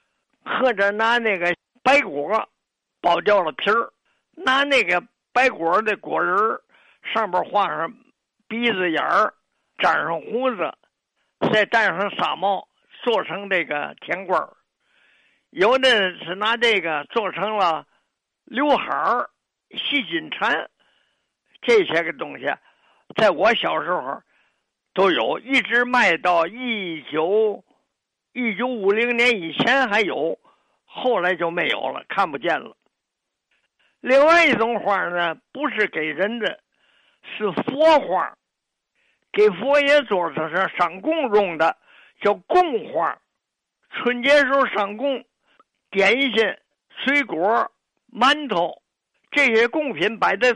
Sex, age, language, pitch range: male, 50-69, Chinese, 195-280 Hz